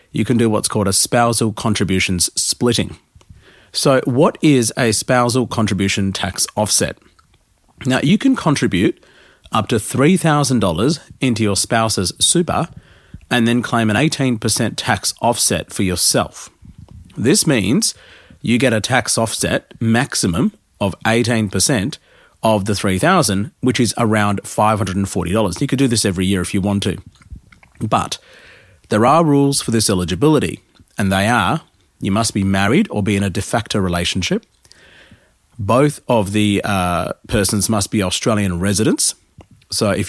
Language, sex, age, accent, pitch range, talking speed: English, male, 40-59, Australian, 100-120 Hz, 145 wpm